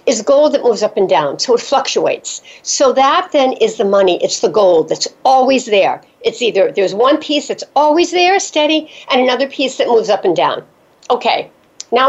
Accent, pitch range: American, 230-320 Hz